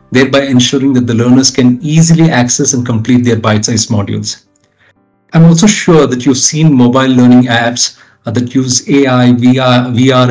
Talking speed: 155 wpm